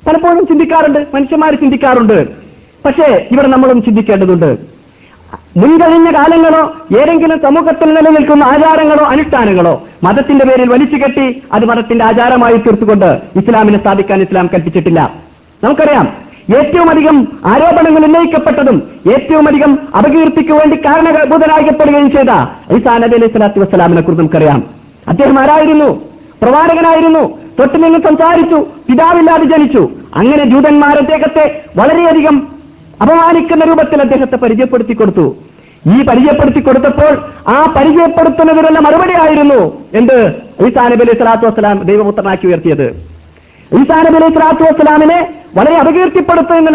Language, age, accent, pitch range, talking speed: Malayalam, 50-69, native, 235-315 Hz, 100 wpm